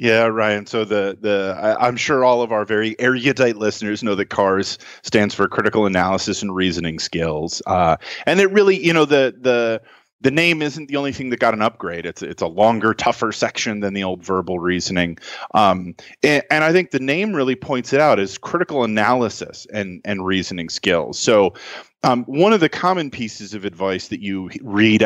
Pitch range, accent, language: 100-140 Hz, American, English